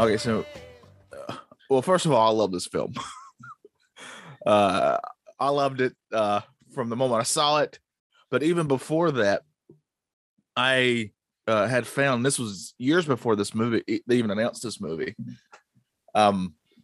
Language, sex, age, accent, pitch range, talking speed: English, male, 20-39, American, 105-140 Hz, 150 wpm